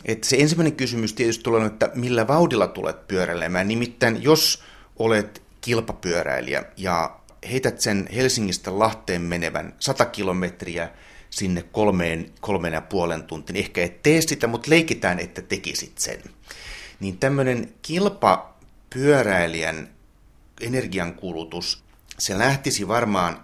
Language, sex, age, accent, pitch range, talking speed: Finnish, male, 30-49, native, 90-130 Hz, 120 wpm